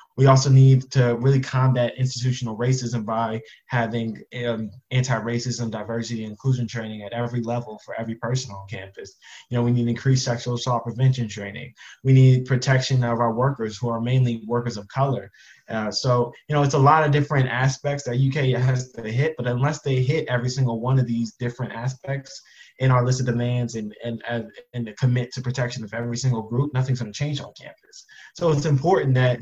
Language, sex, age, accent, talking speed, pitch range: English, male, 20-39, American, 195 wpm, 115-130 Hz